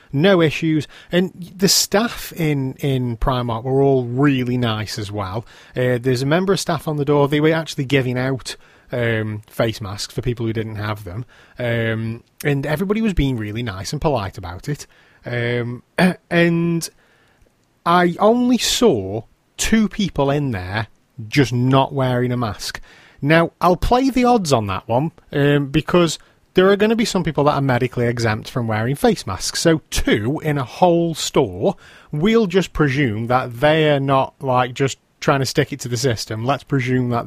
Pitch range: 125-195 Hz